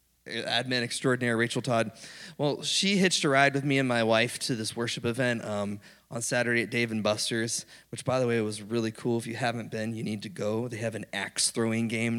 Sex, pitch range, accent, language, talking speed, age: male, 120-185 Hz, American, English, 220 wpm, 20-39